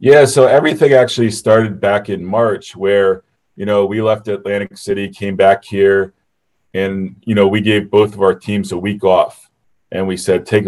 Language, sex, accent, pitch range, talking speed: English, male, American, 95-110 Hz, 190 wpm